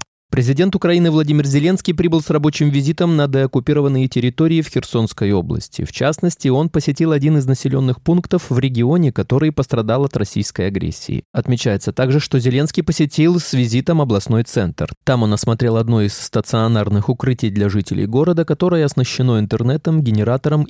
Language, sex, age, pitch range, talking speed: Russian, male, 20-39, 115-155 Hz, 150 wpm